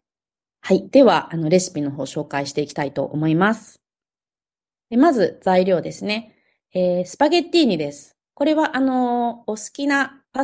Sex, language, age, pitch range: female, Japanese, 20-39, 160-255 Hz